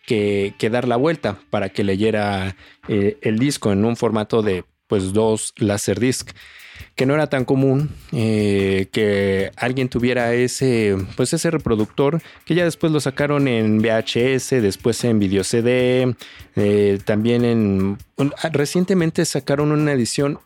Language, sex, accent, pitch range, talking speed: Spanish, male, Mexican, 110-135 Hz, 150 wpm